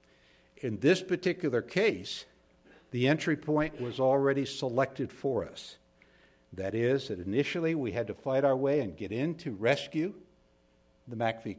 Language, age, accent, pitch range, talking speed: English, 60-79, American, 100-150 Hz, 150 wpm